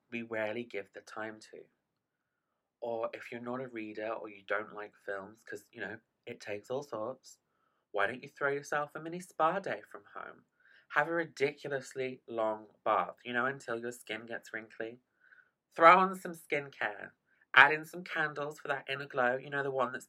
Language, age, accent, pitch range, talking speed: English, 20-39, British, 115-160 Hz, 190 wpm